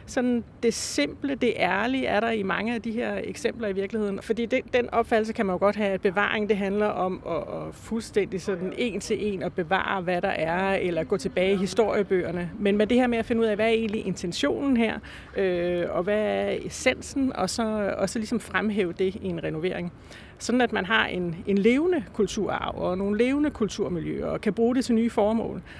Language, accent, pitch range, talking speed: Danish, native, 185-225 Hz, 220 wpm